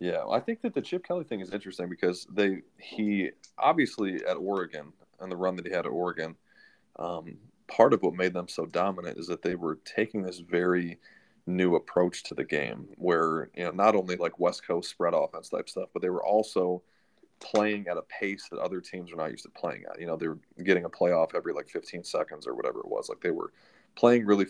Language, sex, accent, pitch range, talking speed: English, male, American, 90-105 Hz, 230 wpm